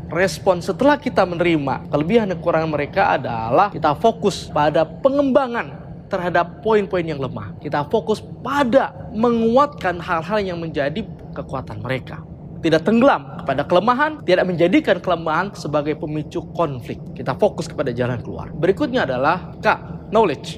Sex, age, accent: male, 20-39, native